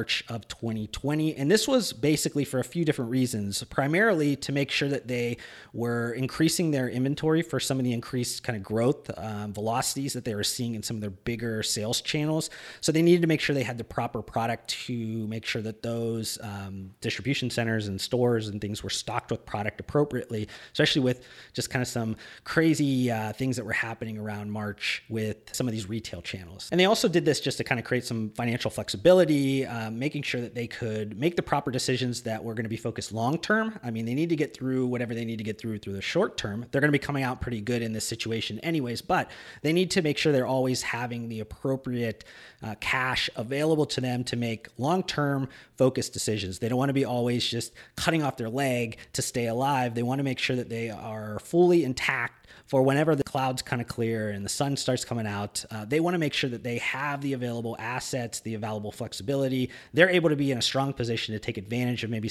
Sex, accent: male, American